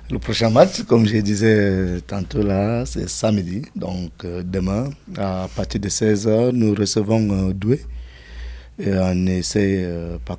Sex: male